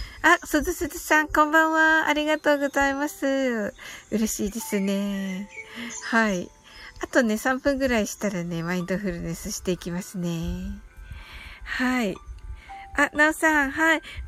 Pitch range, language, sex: 230-300 Hz, Japanese, female